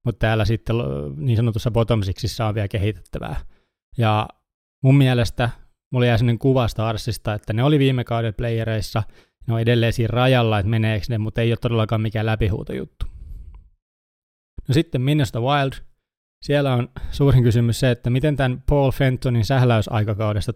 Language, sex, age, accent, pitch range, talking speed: Finnish, male, 20-39, native, 110-125 Hz, 150 wpm